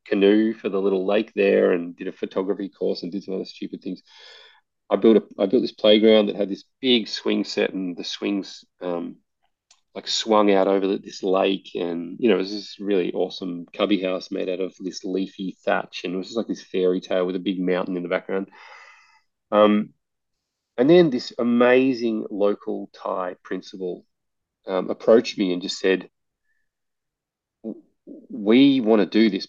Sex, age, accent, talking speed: male, 30-49, Australian, 185 wpm